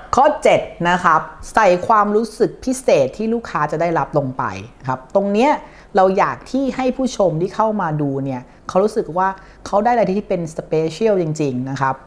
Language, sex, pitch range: Thai, female, 155-215 Hz